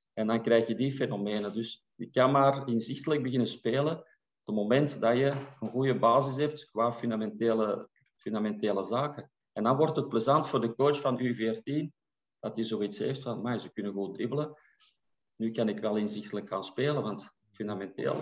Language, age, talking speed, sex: Dutch, 40-59, 180 wpm, male